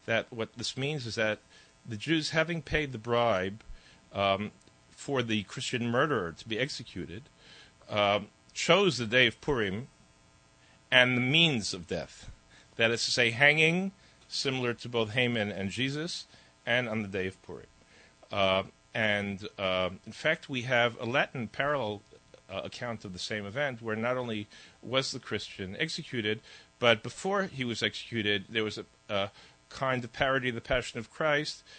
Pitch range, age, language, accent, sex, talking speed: 100-125 Hz, 40-59, English, American, male, 165 wpm